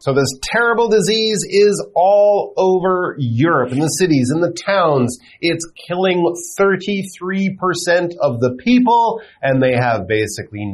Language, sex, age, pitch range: Chinese, male, 30-49, 115-175 Hz